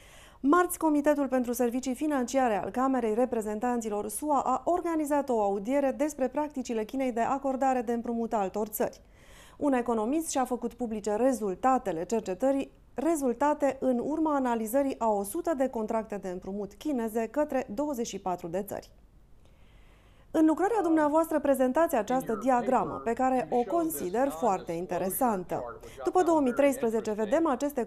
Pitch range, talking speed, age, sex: 215-285 Hz, 130 wpm, 30-49, female